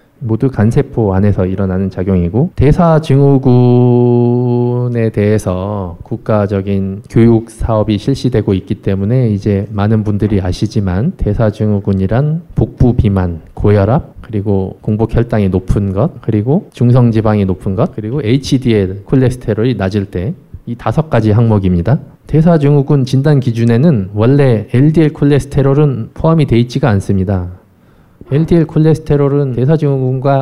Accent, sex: native, male